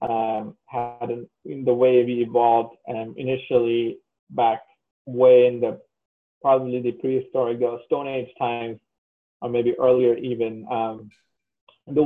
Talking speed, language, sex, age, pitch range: 125 wpm, English, male, 30-49, 115-130 Hz